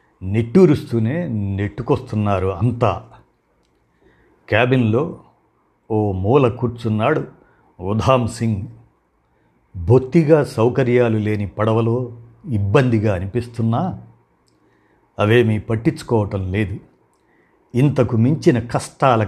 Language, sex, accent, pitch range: Telugu, male, native, 105-135 Hz